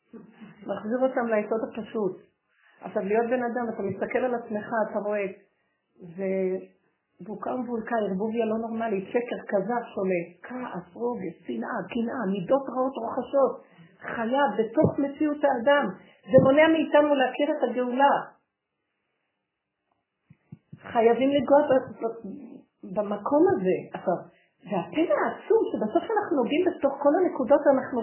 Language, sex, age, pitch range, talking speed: Hebrew, female, 50-69, 200-270 Hz, 115 wpm